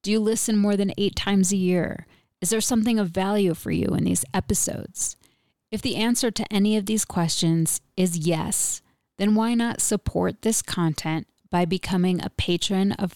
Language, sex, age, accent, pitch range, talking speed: English, female, 30-49, American, 160-200 Hz, 180 wpm